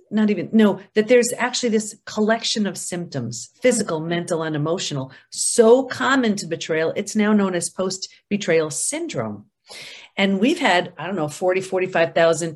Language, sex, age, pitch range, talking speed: English, female, 40-59, 165-220 Hz, 155 wpm